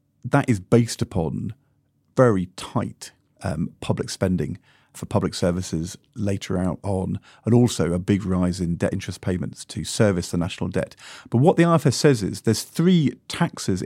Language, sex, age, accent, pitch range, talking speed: English, male, 40-59, British, 100-130 Hz, 160 wpm